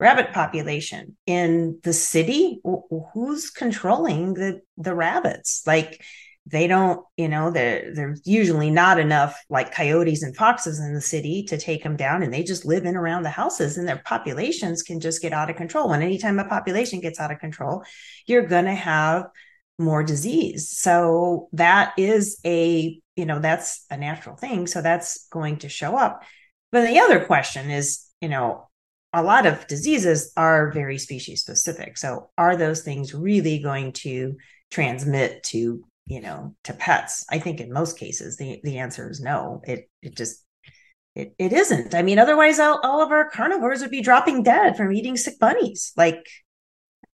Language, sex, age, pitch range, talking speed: English, female, 30-49, 155-190 Hz, 180 wpm